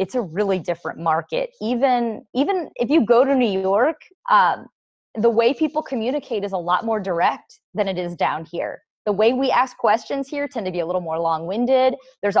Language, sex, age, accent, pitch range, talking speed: English, female, 20-39, American, 180-240 Hz, 210 wpm